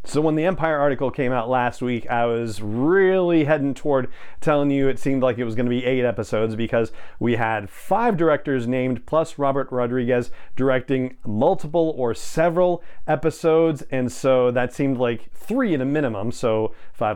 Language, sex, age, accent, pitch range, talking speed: English, male, 40-59, American, 120-160 Hz, 180 wpm